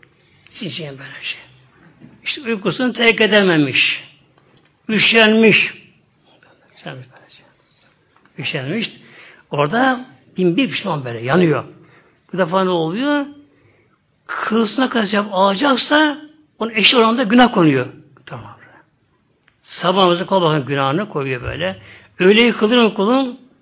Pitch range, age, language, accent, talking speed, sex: 150-215 Hz, 60-79, Turkish, native, 90 wpm, male